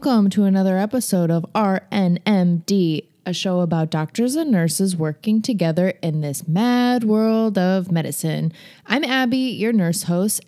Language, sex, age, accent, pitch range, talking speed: English, female, 20-39, American, 165-205 Hz, 145 wpm